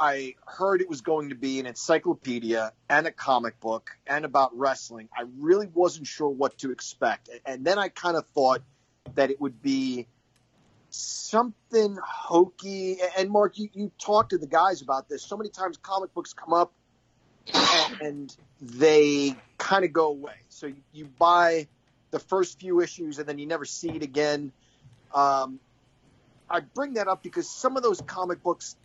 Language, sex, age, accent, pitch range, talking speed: English, male, 40-59, American, 130-175 Hz, 175 wpm